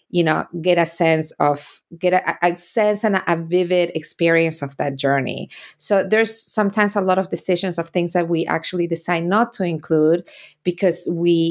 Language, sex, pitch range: English, female, 160-190 Hz